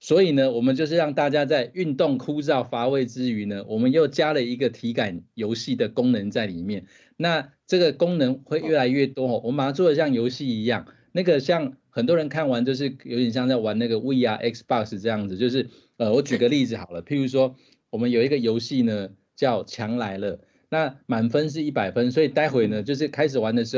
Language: Chinese